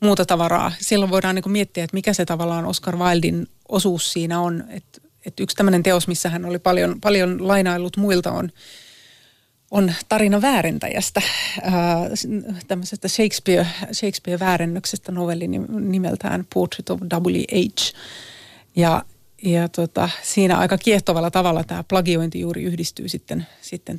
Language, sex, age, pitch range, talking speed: Finnish, female, 30-49, 175-195 Hz, 130 wpm